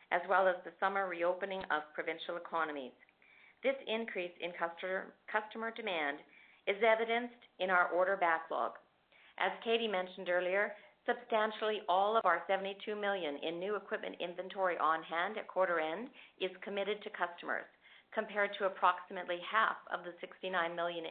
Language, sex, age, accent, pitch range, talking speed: English, female, 50-69, American, 170-205 Hz, 145 wpm